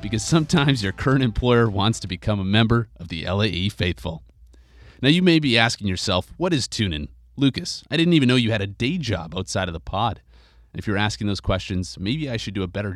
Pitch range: 90-115 Hz